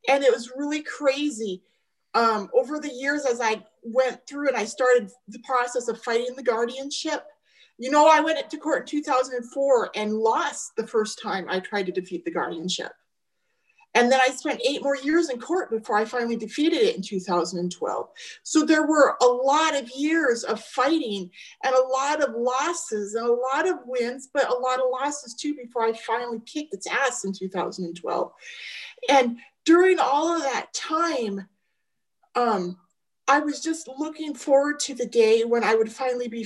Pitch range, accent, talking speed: 240-320 Hz, American, 180 wpm